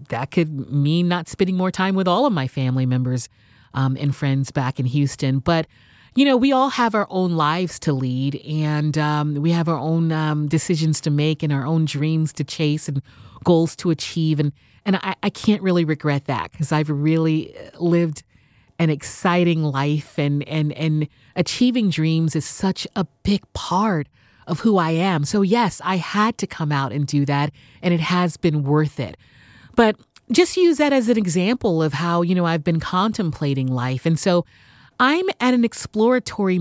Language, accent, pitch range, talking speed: English, American, 145-190 Hz, 190 wpm